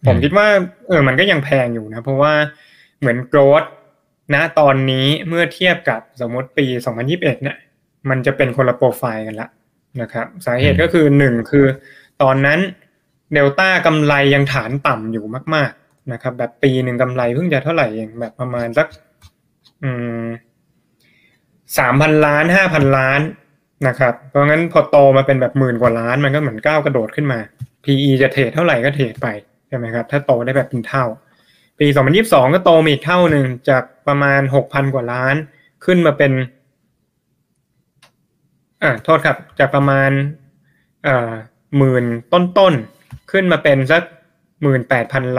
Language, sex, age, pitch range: Thai, male, 20-39, 125-150 Hz